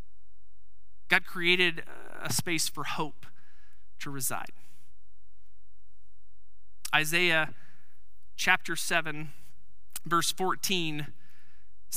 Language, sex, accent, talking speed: English, male, American, 65 wpm